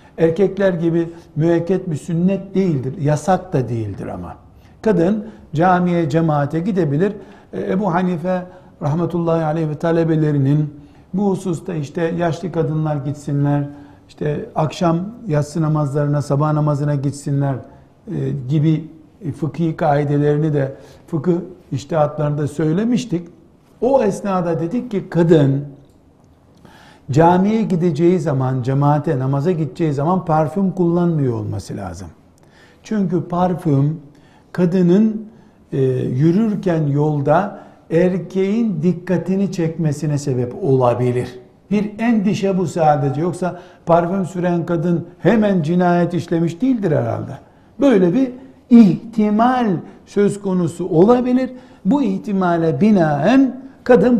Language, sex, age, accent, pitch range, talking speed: Turkish, male, 60-79, native, 145-190 Hz, 100 wpm